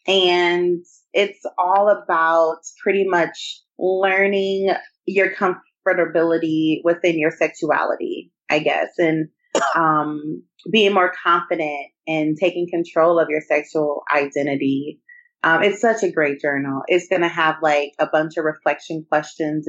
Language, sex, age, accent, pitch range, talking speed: English, female, 30-49, American, 150-180 Hz, 130 wpm